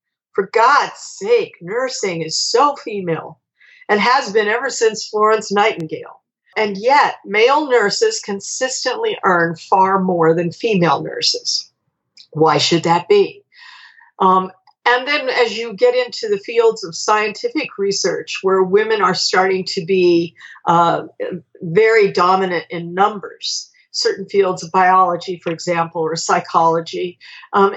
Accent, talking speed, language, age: American, 130 wpm, English, 50-69